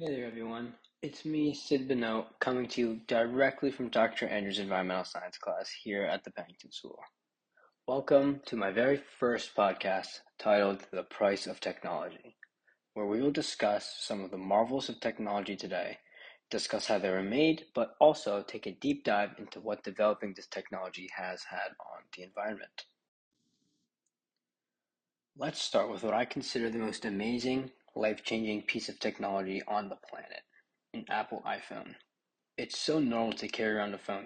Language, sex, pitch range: English, male, 105-130 Hz